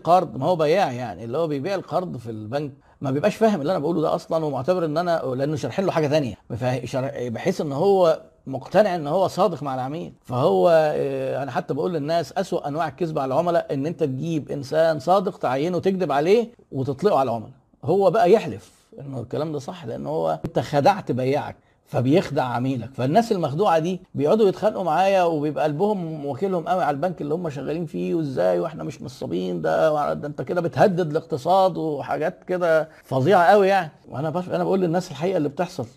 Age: 50-69